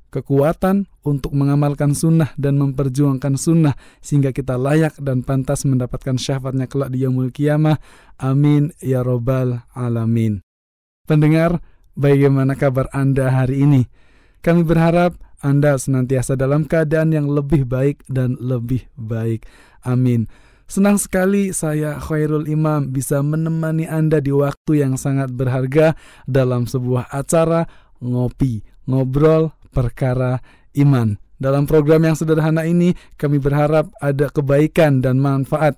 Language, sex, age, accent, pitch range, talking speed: Indonesian, male, 20-39, native, 130-155 Hz, 120 wpm